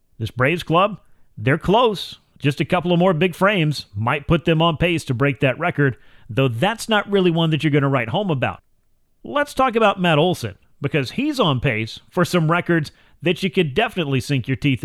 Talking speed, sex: 210 wpm, male